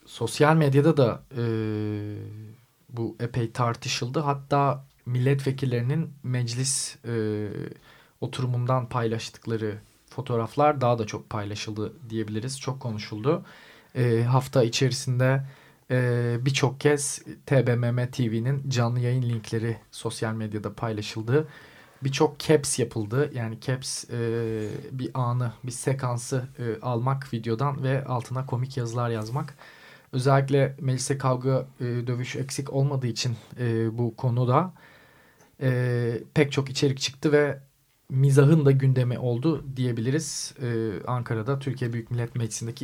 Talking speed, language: 110 wpm, Turkish